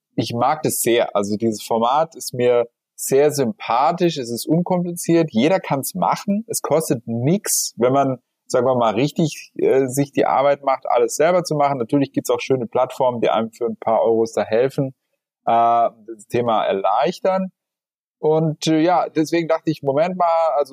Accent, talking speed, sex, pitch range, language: German, 180 wpm, male, 120-165 Hz, German